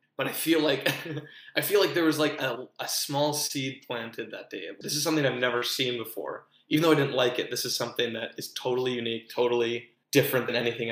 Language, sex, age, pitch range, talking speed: English, male, 20-39, 120-155 Hz, 225 wpm